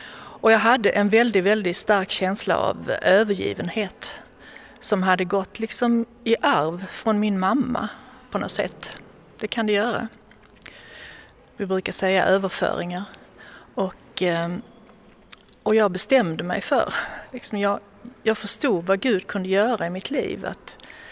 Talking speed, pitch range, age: 135 wpm, 180-220 Hz, 40-59